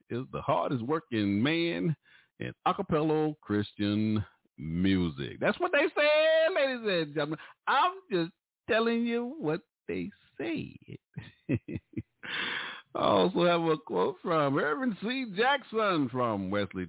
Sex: male